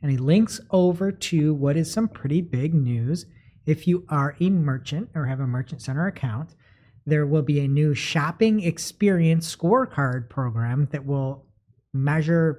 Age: 40-59